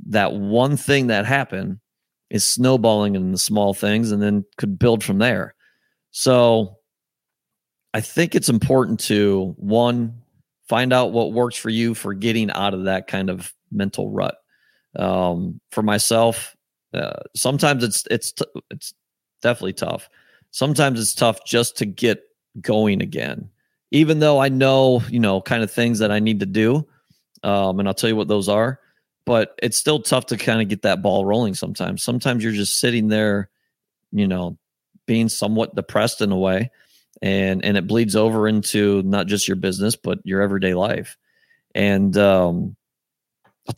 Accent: American